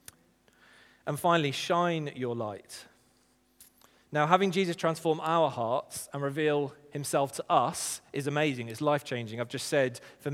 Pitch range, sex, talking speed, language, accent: 140-175 Hz, male, 140 wpm, English, British